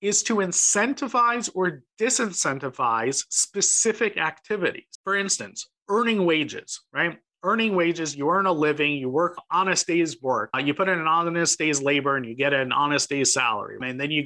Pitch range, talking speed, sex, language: 140-190 Hz, 175 wpm, male, English